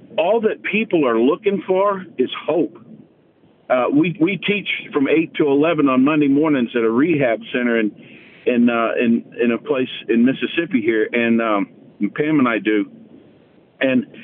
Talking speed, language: 170 wpm, English